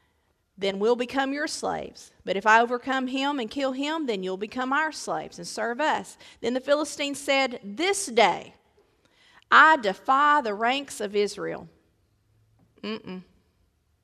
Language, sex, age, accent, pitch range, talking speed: English, female, 40-59, American, 210-315 Hz, 145 wpm